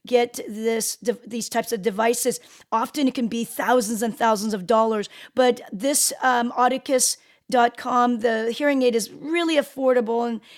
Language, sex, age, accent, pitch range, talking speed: English, female, 40-59, American, 235-280 Hz, 145 wpm